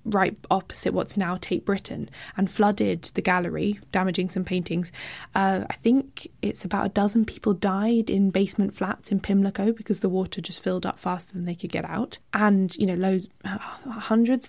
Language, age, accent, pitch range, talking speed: English, 20-39, British, 185-205 Hz, 180 wpm